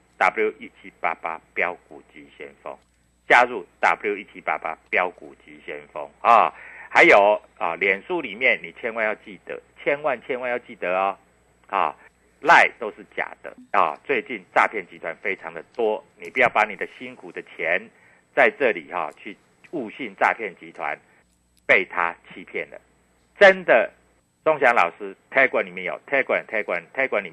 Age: 60-79